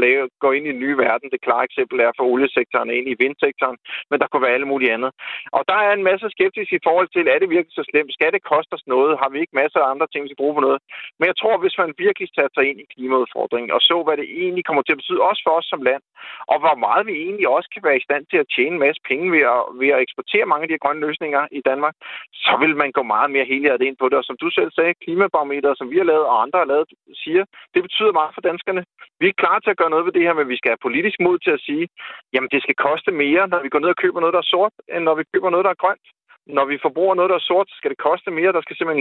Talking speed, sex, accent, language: 295 wpm, male, native, Danish